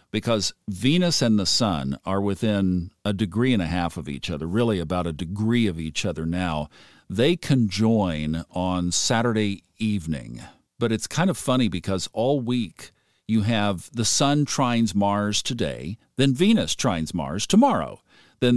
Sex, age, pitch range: male, 50-69, 100-140 Hz